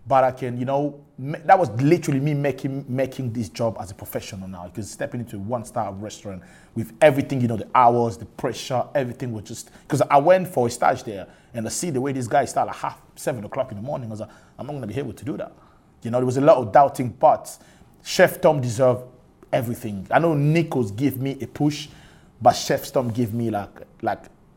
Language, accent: English, Nigerian